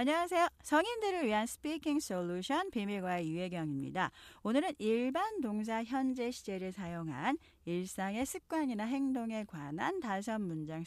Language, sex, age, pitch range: Korean, female, 40-59, 170-275 Hz